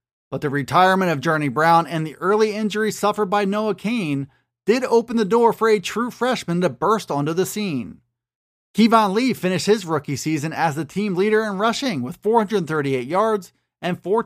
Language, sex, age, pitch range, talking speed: English, male, 30-49, 155-215 Hz, 185 wpm